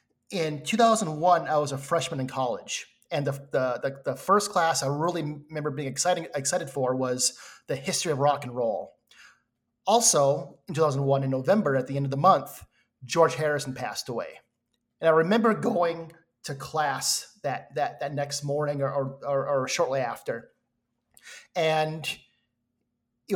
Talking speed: 155 wpm